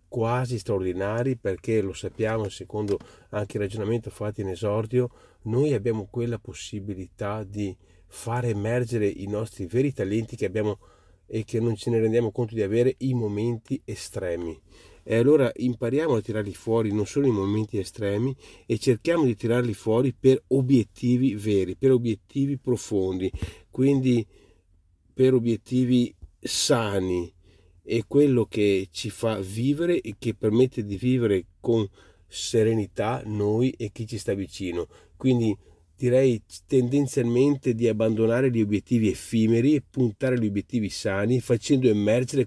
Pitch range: 100-125 Hz